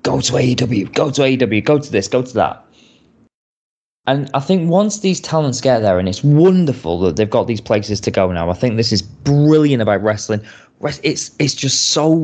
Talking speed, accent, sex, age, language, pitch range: 205 wpm, British, male, 20-39, English, 120-160 Hz